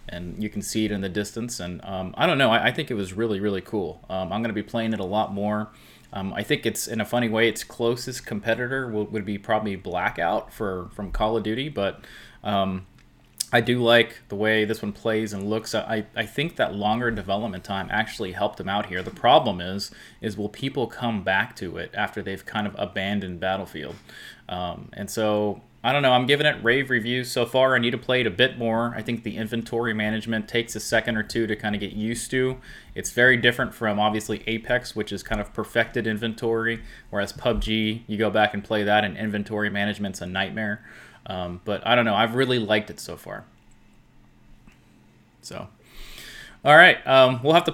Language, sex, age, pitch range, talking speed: English, male, 30-49, 105-120 Hz, 215 wpm